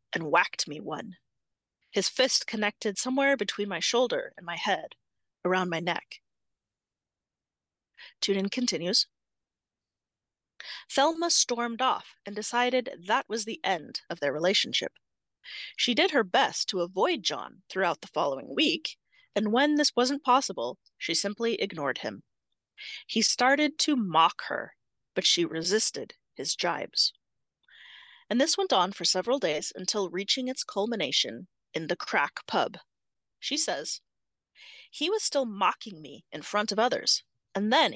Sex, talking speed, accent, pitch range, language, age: female, 140 wpm, American, 190-265 Hz, English, 30-49